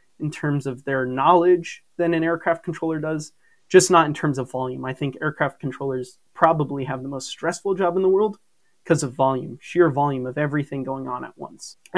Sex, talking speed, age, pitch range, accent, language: male, 205 wpm, 20-39, 135-165 Hz, American, English